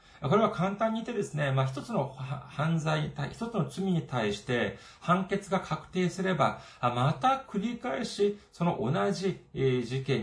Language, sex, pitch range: Japanese, male, 140-210 Hz